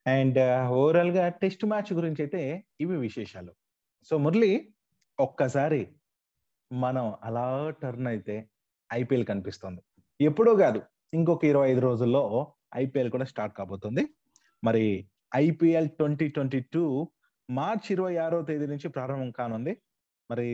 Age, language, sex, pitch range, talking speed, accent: 30-49, Telugu, male, 125-170 Hz, 115 wpm, native